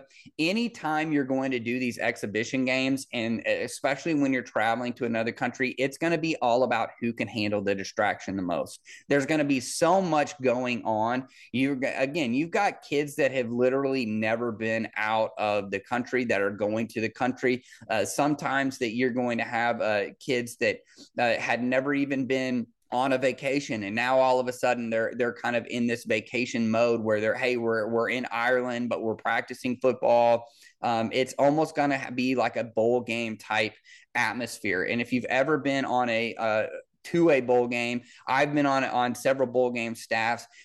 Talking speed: 195 wpm